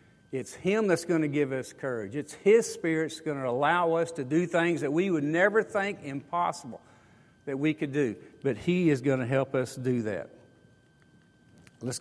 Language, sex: English, male